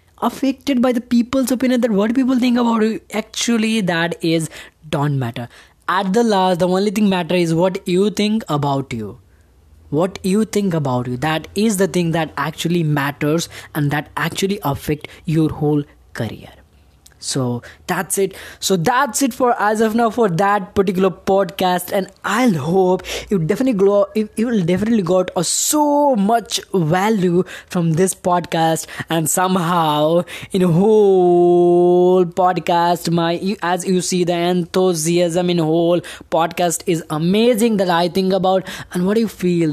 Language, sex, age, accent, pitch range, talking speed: English, female, 20-39, Indian, 165-220 Hz, 160 wpm